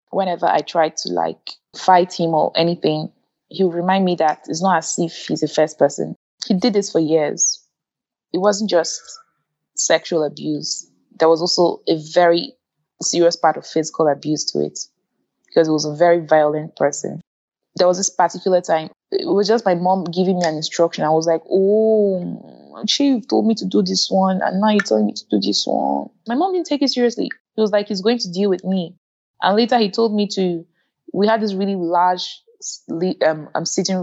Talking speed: 200 wpm